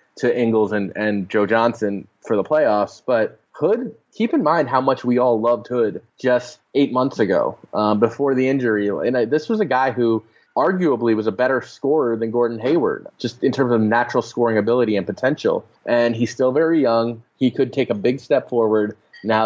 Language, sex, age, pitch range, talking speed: English, male, 20-39, 110-130 Hz, 195 wpm